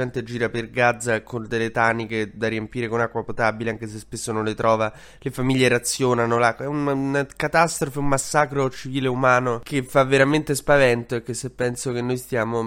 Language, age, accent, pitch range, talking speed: Italian, 20-39, native, 115-150 Hz, 190 wpm